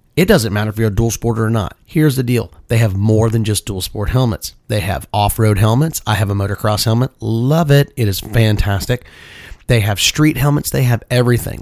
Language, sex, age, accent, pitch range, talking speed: English, male, 30-49, American, 105-130 Hz, 215 wpm